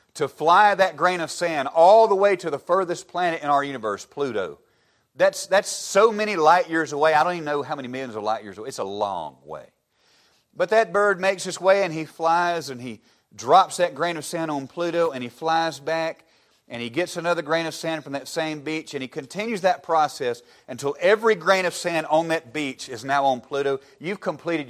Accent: American